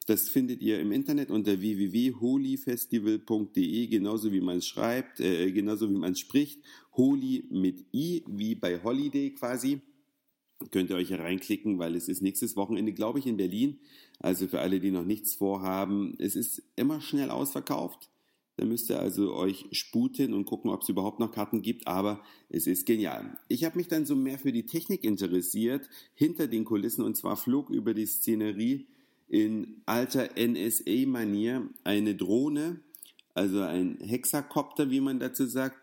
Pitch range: 95-135 Hz